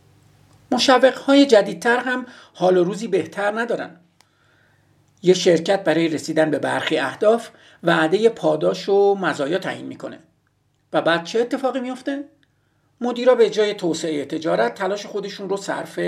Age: 50-69